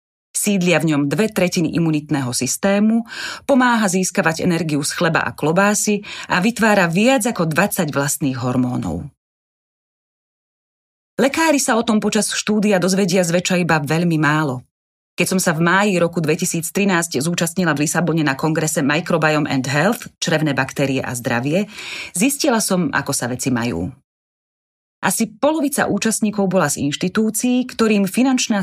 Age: 30-49